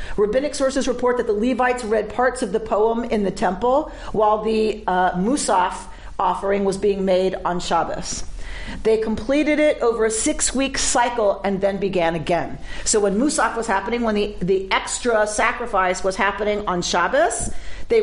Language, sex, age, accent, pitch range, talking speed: English, female, 50-69, American, 190-240 Hz, 170 wpm